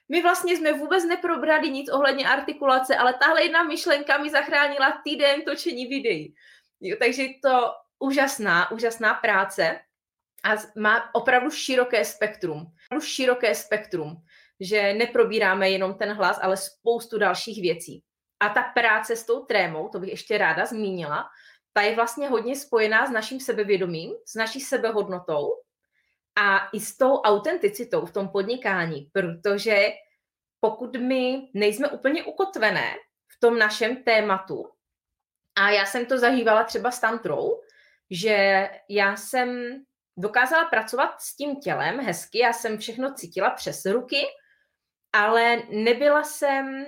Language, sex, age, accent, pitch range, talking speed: Czech, female, 20-39, native, 210-280 Hz, 135 wpm